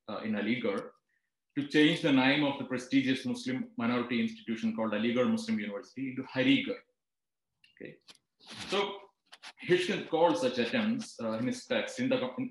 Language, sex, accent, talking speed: Malayalam, male, native, 155 wpm